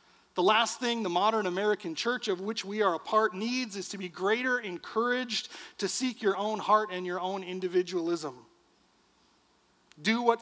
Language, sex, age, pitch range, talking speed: English, male, 40-59, 175-220 Hz, 175 wpm